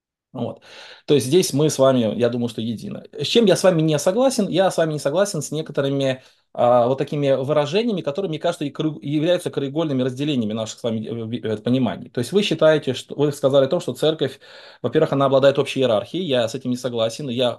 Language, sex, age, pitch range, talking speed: Russian, male, 20-39, 130-160 Hz, 210 wpm